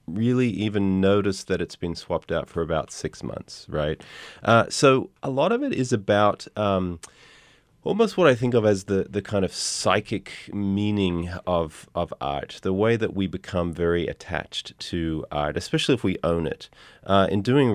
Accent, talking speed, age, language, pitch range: Australian, 185 wpm, 30-49, English, 85-105 Hz